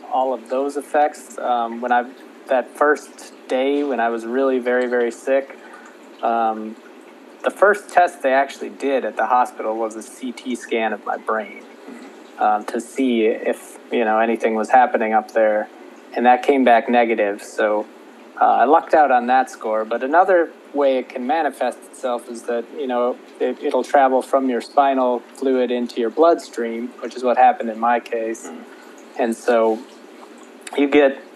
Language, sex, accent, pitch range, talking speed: English, male, American, 115-135 Hz, 170 wpm